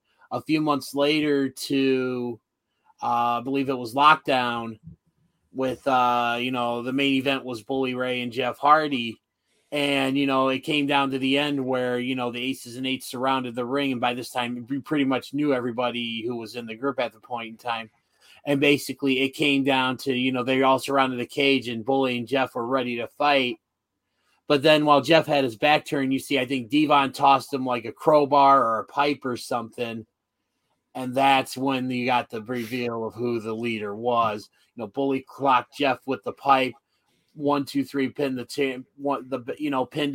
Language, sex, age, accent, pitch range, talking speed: English, male, 30-49, American, 120-140 Hz, 205 wpm